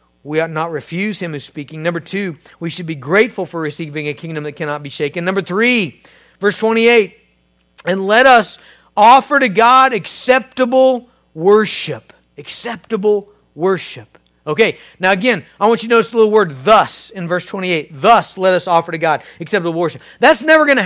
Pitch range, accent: 175-255 Hz, American